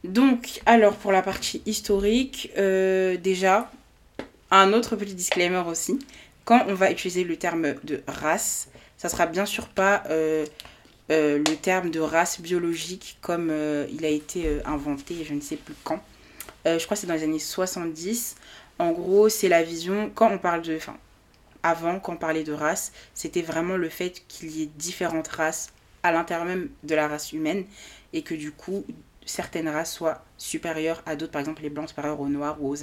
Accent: French